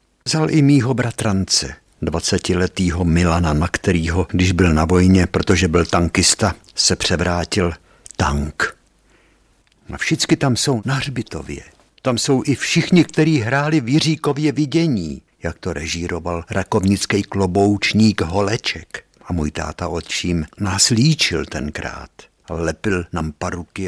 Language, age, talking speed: Czech, 60-79, 125 wpm